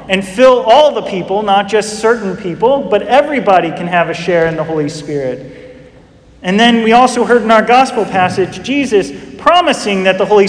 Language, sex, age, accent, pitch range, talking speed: English, male, 40-59, American, 175-240 Hz, 190 wpm